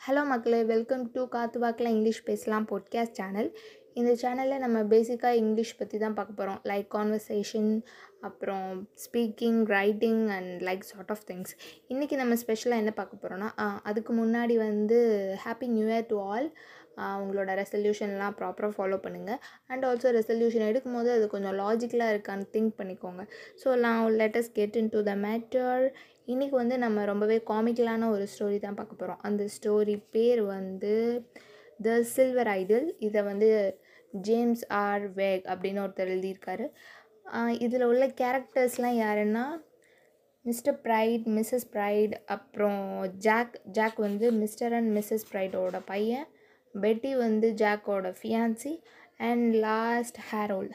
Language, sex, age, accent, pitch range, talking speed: Tamil, female, 20-39, native, 205-240 Hz, 135 wpm